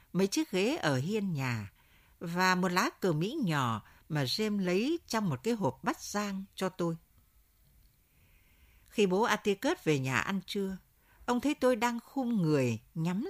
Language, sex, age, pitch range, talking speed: Vietnamese, female, 60-79, 150-230 Hz, 165 wpm